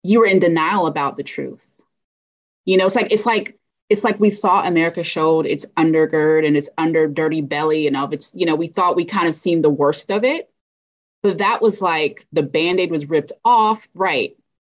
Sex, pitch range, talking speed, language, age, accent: female, 150-185 Hz, 210 wpm, English, 20-39, American